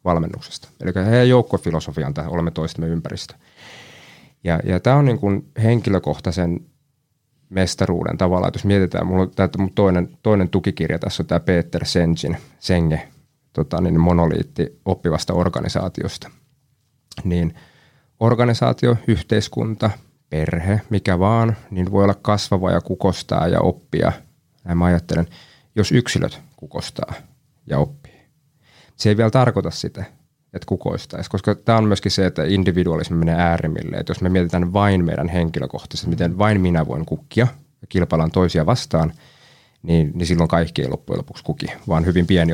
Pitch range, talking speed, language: 85-110 Hz, 135 wpm, Finnish